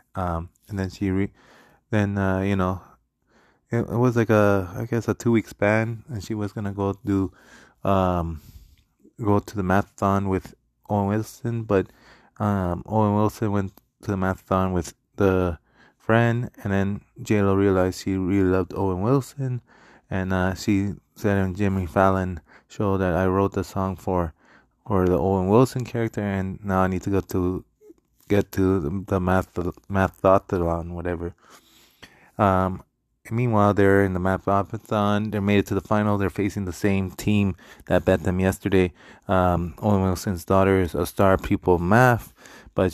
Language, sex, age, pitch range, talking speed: English, male, 20-39, 95-105 Hz, 170 wpm